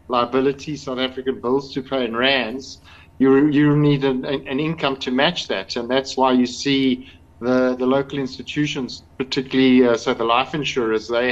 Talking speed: 175 wpm